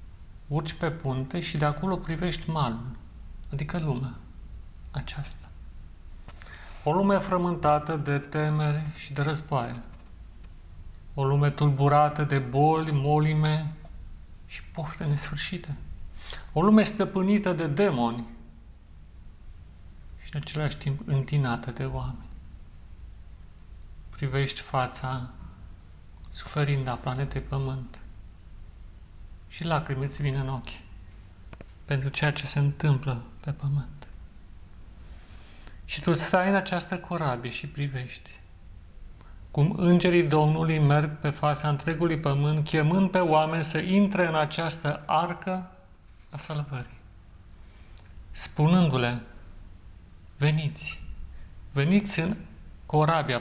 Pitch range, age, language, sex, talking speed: 90-150 Hz, 40-59, Romanian, male, 100 wpm